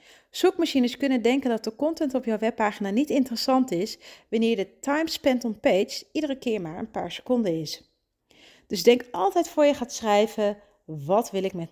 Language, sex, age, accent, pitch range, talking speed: Dutch, female, 40-59, Dutch, 175-235 Hz, 185 wpm